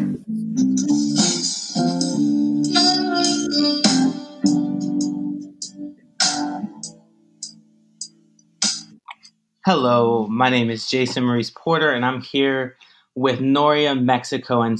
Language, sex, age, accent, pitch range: English, male, 30-49, American, 115-140 Hz